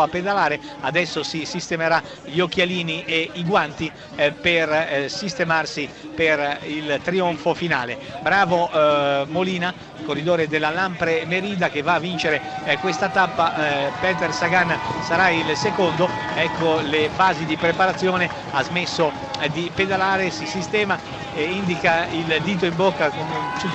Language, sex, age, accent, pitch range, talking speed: Italian, male, 50-69, native, 155-180 Hz, 125 wpm